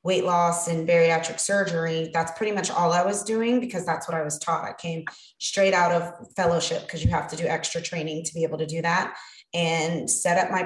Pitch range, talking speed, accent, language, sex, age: 170-195 Hz, 230 wpm, American, English, female, 20-39